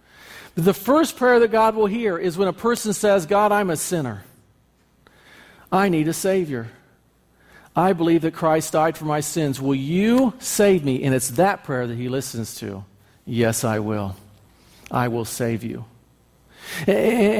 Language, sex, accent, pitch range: English, male, American, 155-220 Hz